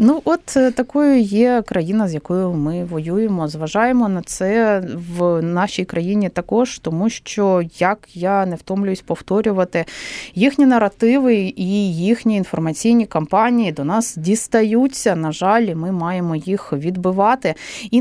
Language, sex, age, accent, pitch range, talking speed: Ukrainian, female, 30-49, native, 175-230 Hz, 130 wpm